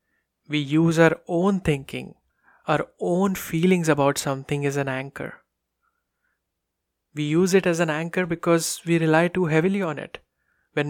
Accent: Indian